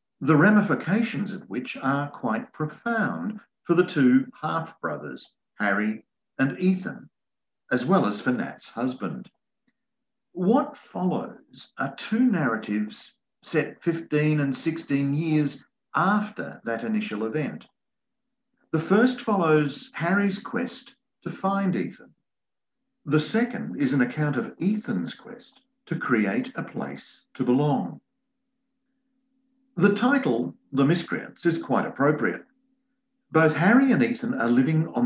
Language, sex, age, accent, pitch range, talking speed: English, male, 50-69, Australian, 150-245 Hz, 120 wpm